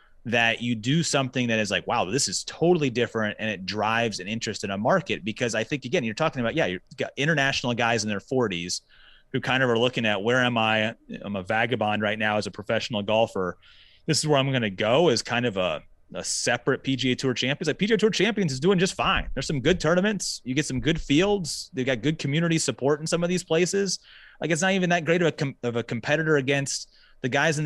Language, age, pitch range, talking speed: English, 30-49, 110-150 Hz, 240 wpm